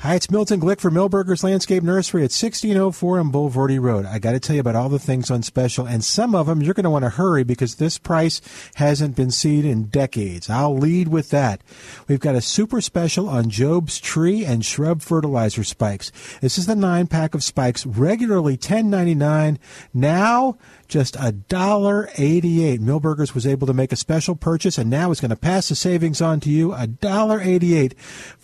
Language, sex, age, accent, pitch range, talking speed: English, male, 50-69, American, 130-180 Hz, 185 wpm